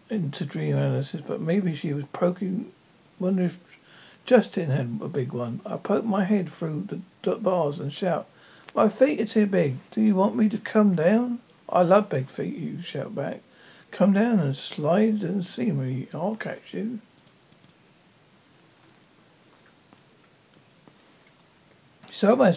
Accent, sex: British, male